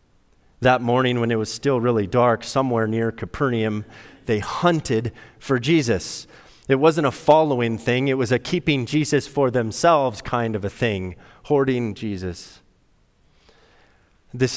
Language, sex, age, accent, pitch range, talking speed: English, male, 30-49, American, 110-140 Hz, 140 wpm